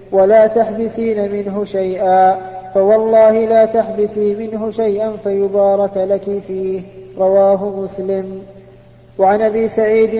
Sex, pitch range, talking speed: male, 195-215 Hz, 100 wpm